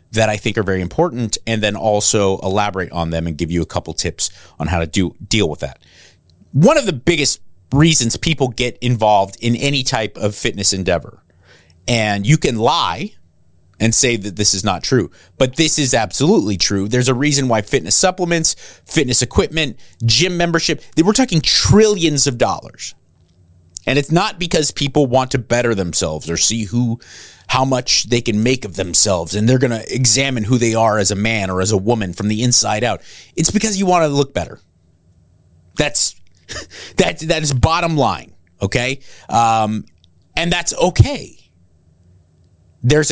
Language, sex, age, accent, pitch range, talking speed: English, male, 30-49, American, 90-135 Hz, 180 wpm